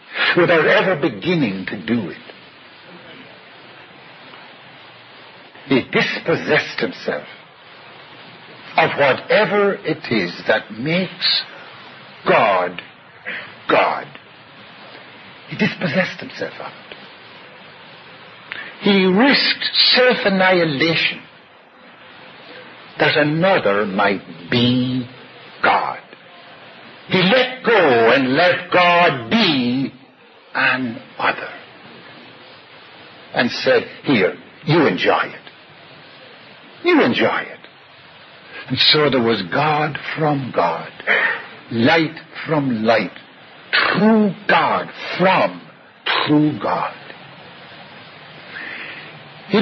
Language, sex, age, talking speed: English, male, 60-79, 75 wpm